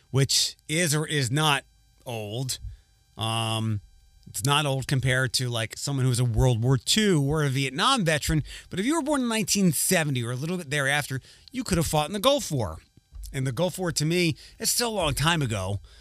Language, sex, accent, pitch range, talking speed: English, male, American, 120-160 Hz, 215 wpm